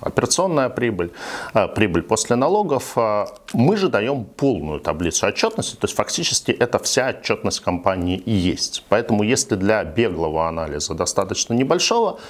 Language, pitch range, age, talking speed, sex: Russian, 90-125 Hz, 50-69, 130 wpm, male